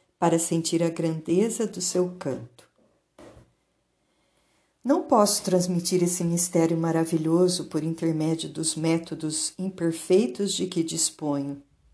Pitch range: 155-185 Hz